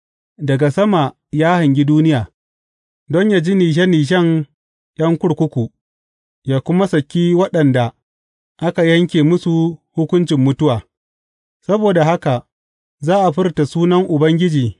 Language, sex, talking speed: English, male, 105 wpm